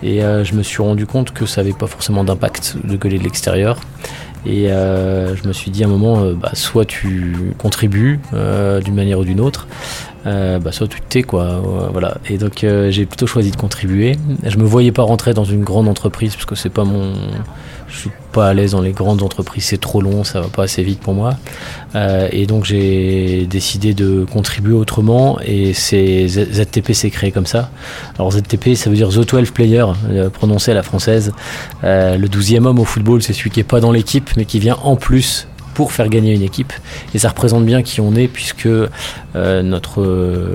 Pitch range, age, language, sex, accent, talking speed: 95-115 Hz, 20-39, French, male, French, 215 wpm